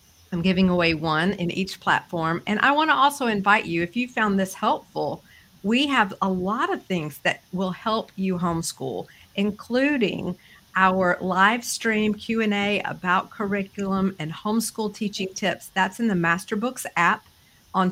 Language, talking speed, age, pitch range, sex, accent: English, 160 wpm, 50-69, 175-215 Hz, female, American